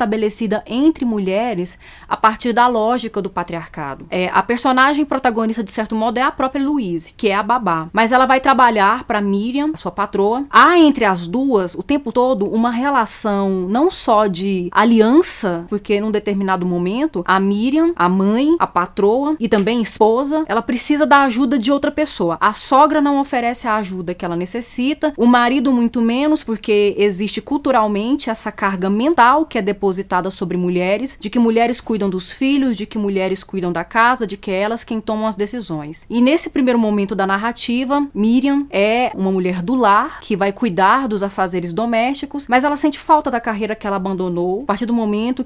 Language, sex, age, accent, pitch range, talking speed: Portuguese, female, 20-39, Brazilian, 195-250 Hz, 185 wpm